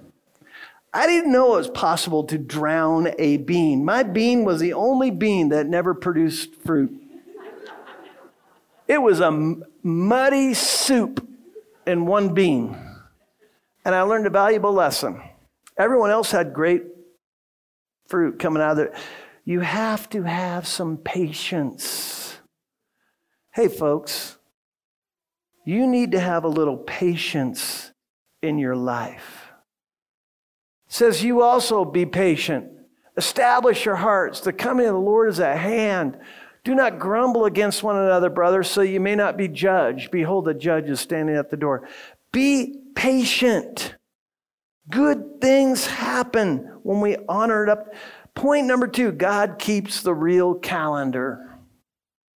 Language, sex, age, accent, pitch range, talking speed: English, male, 50-69, American, 170-245 Hz, 135 wpm